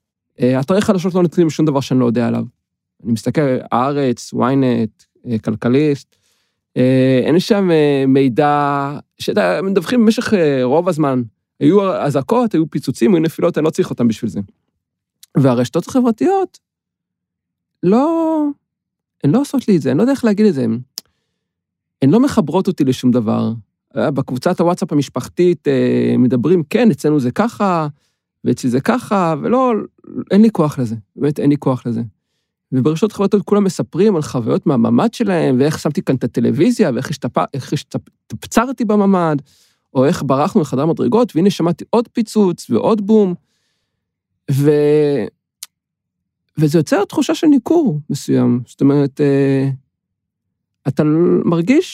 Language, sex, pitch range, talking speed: Hebrew, male, 130-210 Hz, 145 wpm